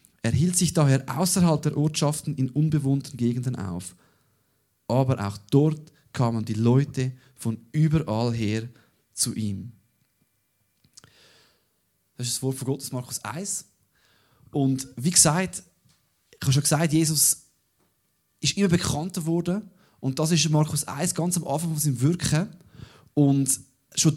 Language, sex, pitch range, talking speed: German, male, 130-165 Hz, 135 wpm